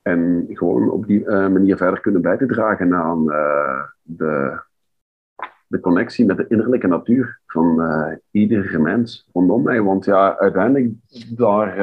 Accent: Dutch